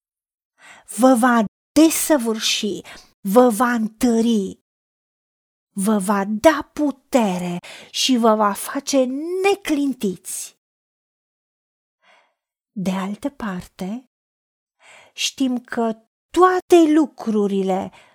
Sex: female